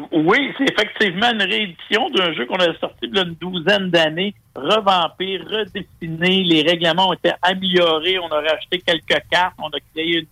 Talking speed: 185 wpm